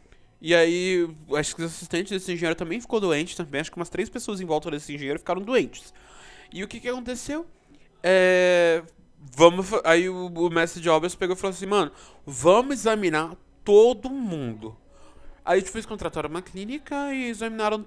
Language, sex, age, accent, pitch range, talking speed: Portuguese, male, 20-39, Brazilian, 130-215 Hz, 180 wpm